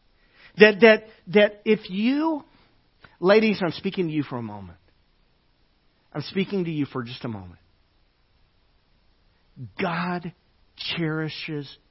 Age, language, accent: 50-69, English, American